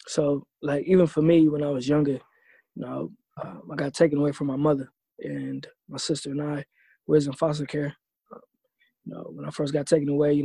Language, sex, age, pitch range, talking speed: English, male, 20-39, 145-160 Hz, 220 wpm